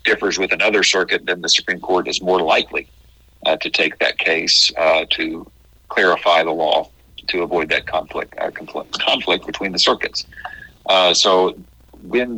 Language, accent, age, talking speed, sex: English, American, 50-69, 160 wpm, male